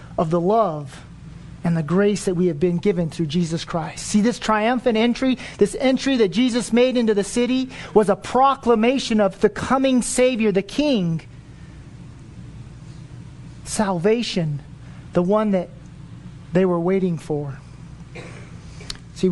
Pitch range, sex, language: 155-200 Hz, male, English